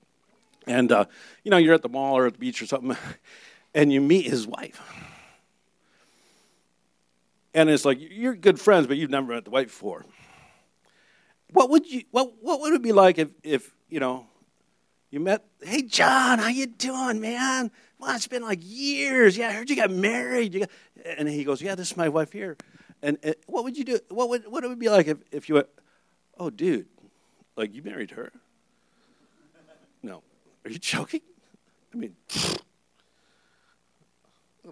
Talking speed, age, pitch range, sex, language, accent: 180 wpm, 50-69, 140-240 Hz, male, English, American